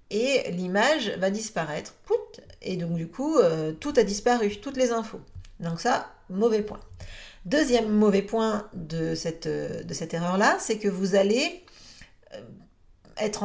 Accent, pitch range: French, 170-220 Hz